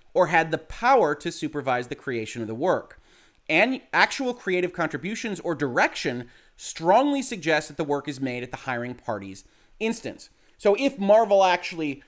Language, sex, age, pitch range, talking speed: English, male, 30-49, 135-180 Hz, 165 wpm